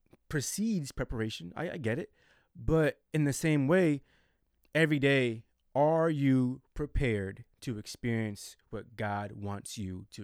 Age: 20-39